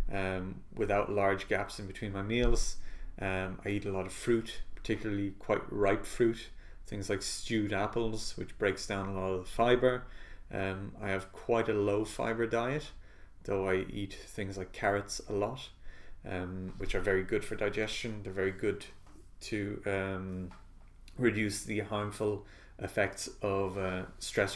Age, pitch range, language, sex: 30-49, 95-105 Hz, English, male